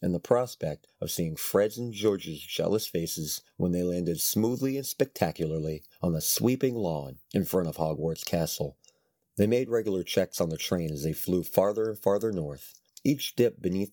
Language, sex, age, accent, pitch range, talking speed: English, male, 30-49, American, 80-105 Hz, 180 wpm